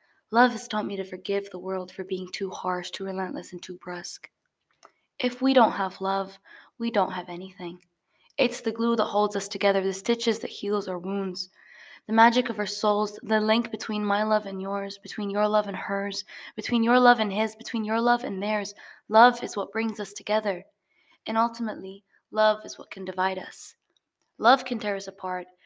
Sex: female